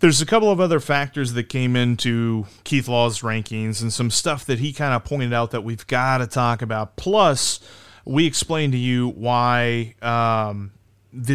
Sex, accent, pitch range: male, American, 115-145 Hz